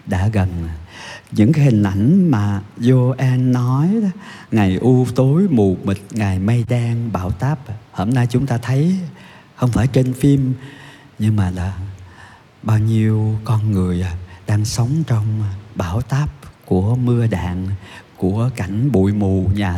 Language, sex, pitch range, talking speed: Vietnamese, male, 100-125 Hz, 150 wpm